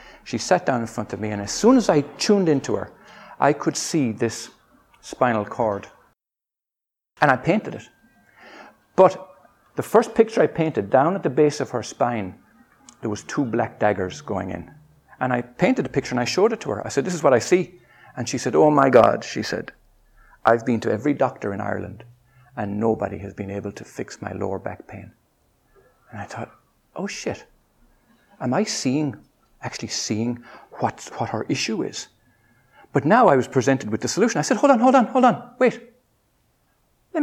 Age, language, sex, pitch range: 60-79, English, male, 105-170 Hz